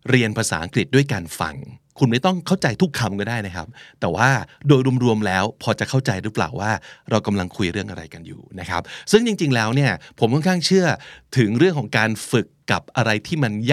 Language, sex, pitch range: Thai, male, 105-140 Hz